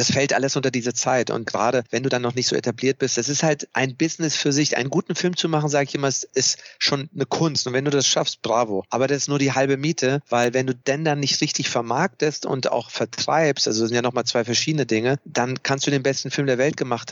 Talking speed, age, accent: 270 wpm, 40-59, German